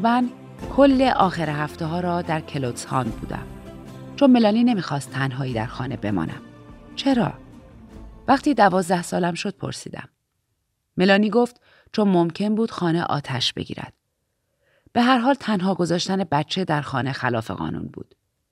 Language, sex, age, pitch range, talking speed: Persian, female, 30-49, 135-205 Hz, 135 wpm